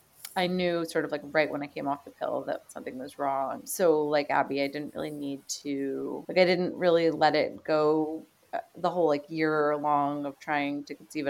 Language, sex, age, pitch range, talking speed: English, female, 30-49, 145-175 Hz, 210 wpm